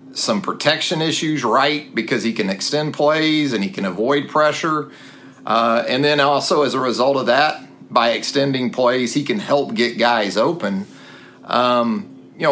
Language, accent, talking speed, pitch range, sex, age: English, American, 165 wpm, 120-155 Hz, male, 40-59